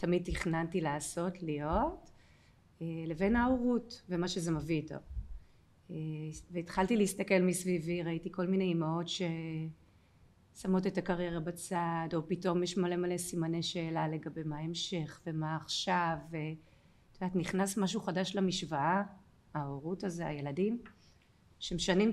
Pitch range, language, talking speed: 160-195 Hz, Hebrew, 115 wpm